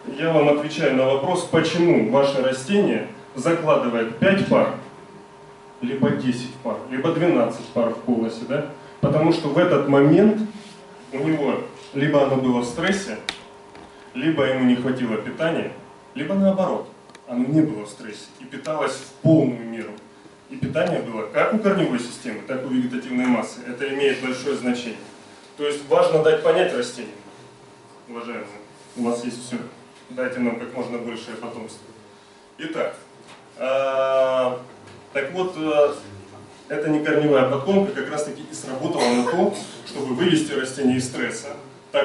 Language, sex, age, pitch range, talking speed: Russian, male, 30-49, 120-165 Hz, 145 wpm